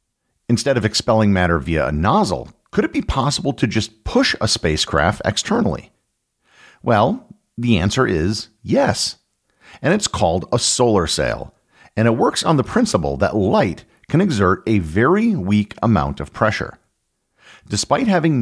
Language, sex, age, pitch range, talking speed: English, male, 50-69, 85-115 Hz, 150 wpm